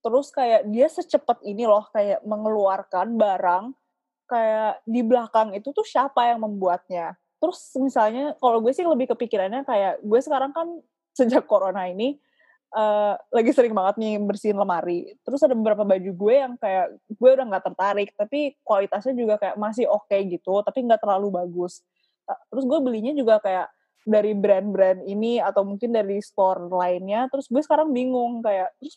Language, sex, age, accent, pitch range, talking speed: Indonesian, female, 20-39, native, 195-255 Hz, 170 wpm